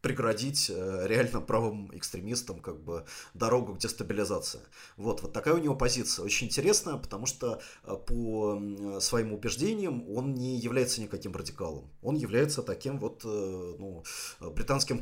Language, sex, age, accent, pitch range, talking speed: Russian, male, 30-49, native, 95-120 Hz, 130 wpm